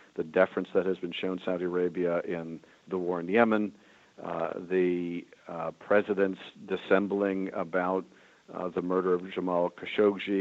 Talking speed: 145 wpm